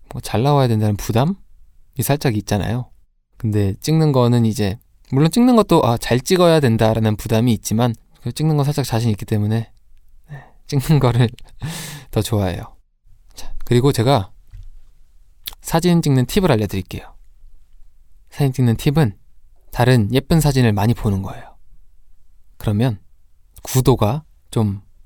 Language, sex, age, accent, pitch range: Korean, male, 20-39, native, 100-130 Hz